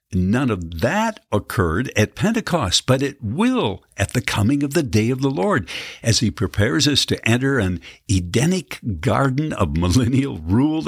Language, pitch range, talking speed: English, 95-145 Hz, 165 wpm